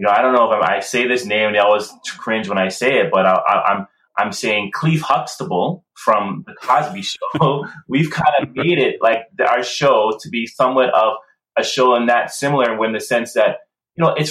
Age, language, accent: 20-39, English, American